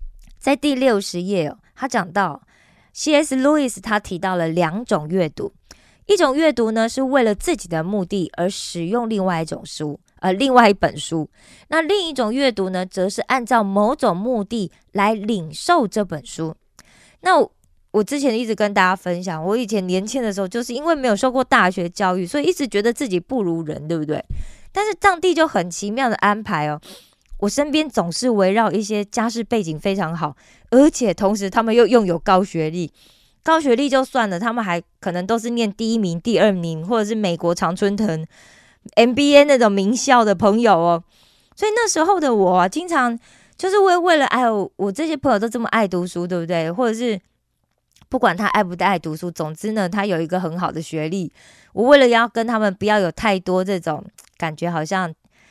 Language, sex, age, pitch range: Korean, female, 20-39, 180-245 Hz